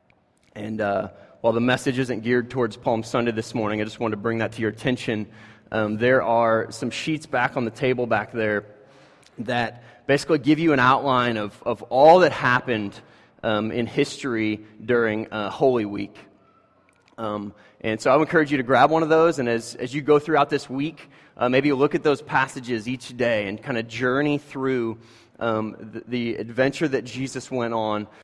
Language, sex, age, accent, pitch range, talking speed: English, male, 30-49, American, 110-130 Hz, 195 wpm